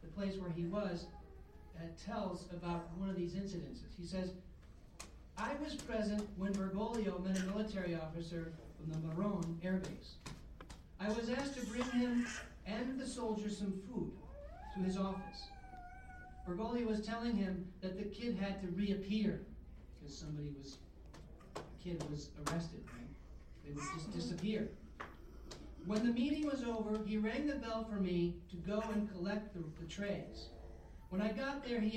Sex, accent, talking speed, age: male, American, 160 wpm, 40-59